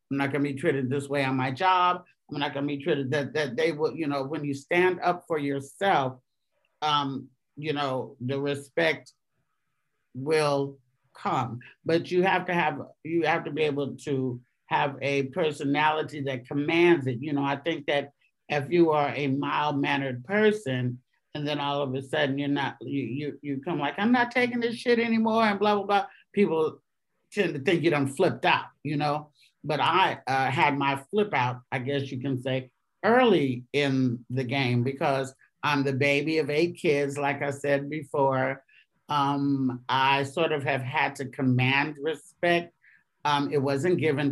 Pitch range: 135-160 Hz